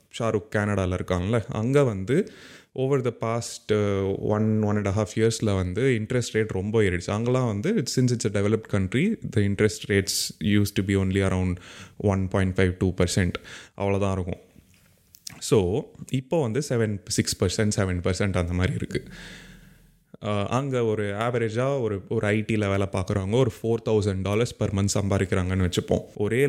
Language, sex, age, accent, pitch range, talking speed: Tamil, male, 20-39, native, 100-125 Hz, 155 wpm